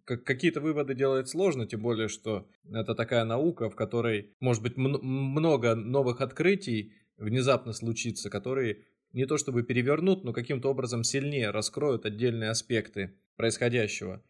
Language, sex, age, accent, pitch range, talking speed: Russian, male, 20-39, native, 110-140 Hz, 135 wpm